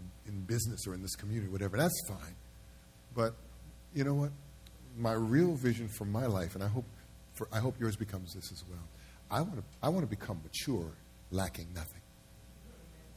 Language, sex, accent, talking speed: English, male, American, 175 wpm